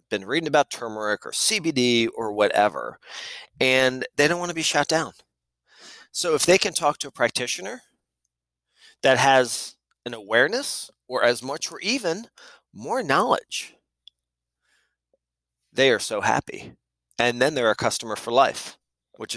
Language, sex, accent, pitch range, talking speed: English, male, American, 95-150 Hz, 145 wpm